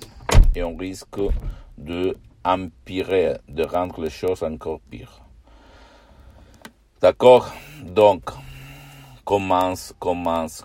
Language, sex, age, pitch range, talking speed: Italian, male, 60-79, 80-100 Hz, 85 wpm